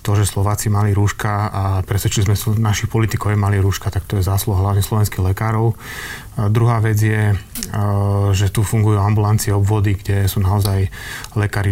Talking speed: 170 wpm